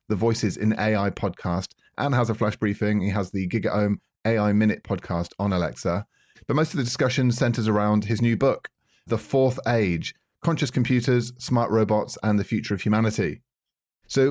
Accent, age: British, 30-49